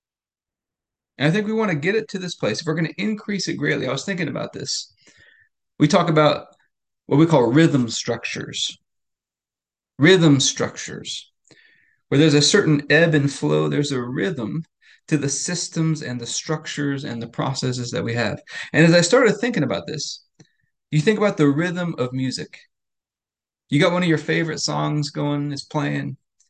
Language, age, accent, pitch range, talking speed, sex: English, 30-49, American, 145-175 Hz, 175 wpm, male